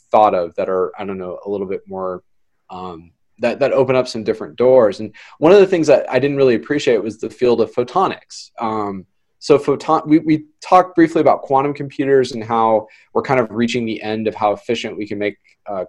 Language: English